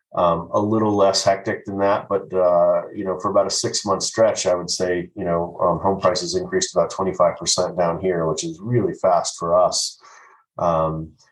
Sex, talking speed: male, 190 wpm